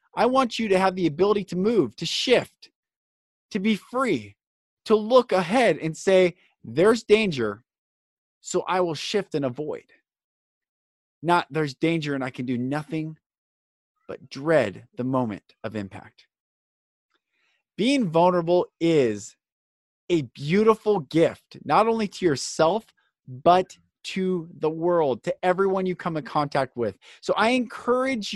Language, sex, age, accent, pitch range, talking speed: English, male, 30-49, American, 140-205 Hz, 140 wpm